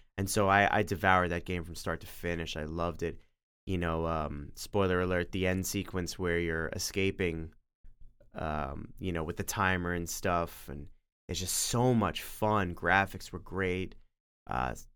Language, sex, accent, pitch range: English, male, American, 80-100 Hz